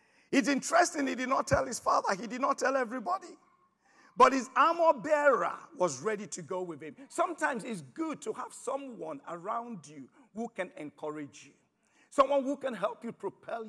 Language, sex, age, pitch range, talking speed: English, male, 50-69, 160-255 Hz, 180 wpm